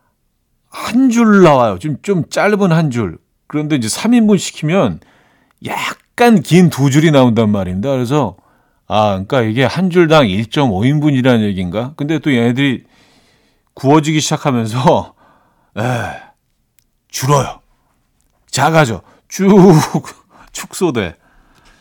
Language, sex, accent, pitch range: Korean, male, native, 110-155 Hz